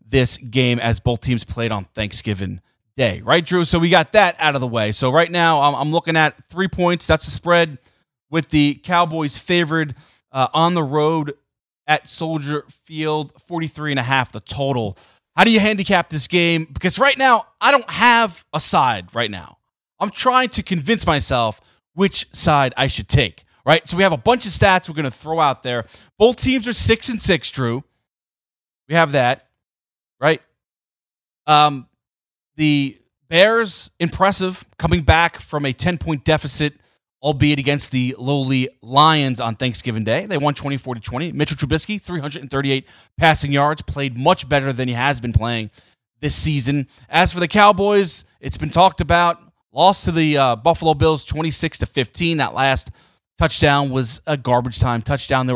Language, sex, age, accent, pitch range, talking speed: English, male, 20-39, American, 125-170 Hz, 185 wpm